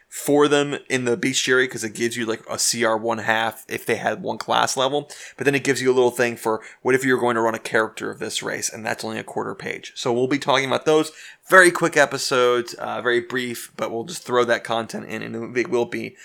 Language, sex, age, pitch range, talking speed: English, male, 20-39, 115-145 Hz, 260 wpm